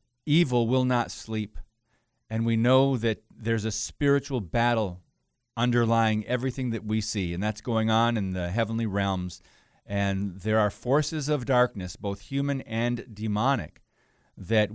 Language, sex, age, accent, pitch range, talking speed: English, male, 40-59, American, 105-125 Hz, 145 wpm